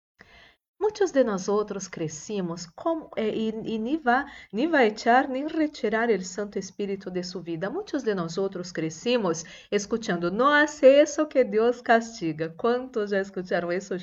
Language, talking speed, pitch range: Spanish, 140 wpm, 195-275 Hz